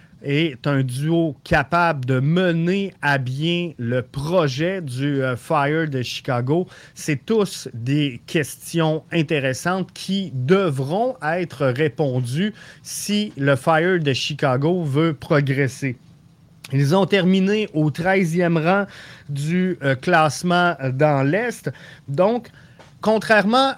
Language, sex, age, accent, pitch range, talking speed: French, male, 30-49, Canadian, 145-180 Hz, 110 wpm